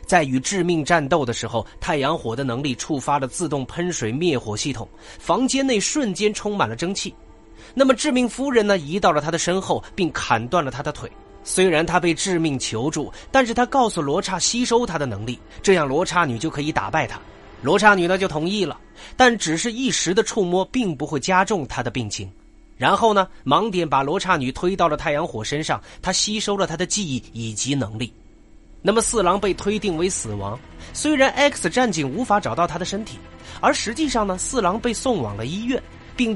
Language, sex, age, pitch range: Chinese, male, 30-49, 135-205 Hz